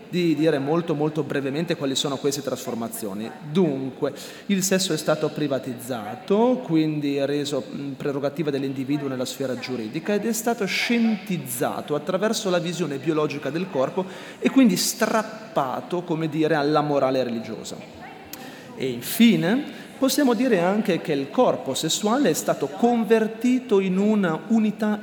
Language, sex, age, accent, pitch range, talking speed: Italian, male, 30-49, native, 140-200 Hz, 130 wpm